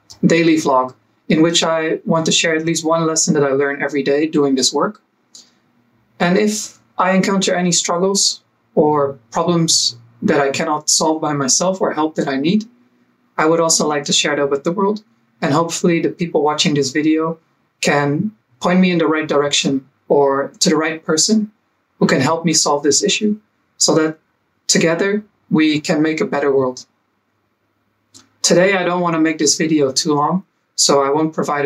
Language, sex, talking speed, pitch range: English, male, 185 wpm, 140-175 Hz